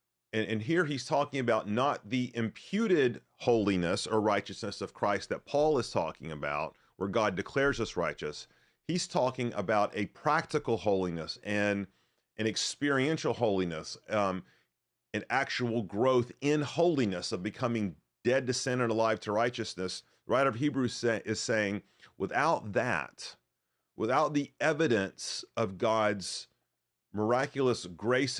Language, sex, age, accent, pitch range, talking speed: English, male, 40-59, American, 95-125 Hz, 135 wpm